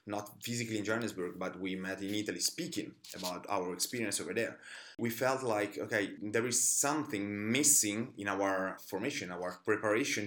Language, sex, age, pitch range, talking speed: English, male, 30-49, 100-120 Hz, 165 wpm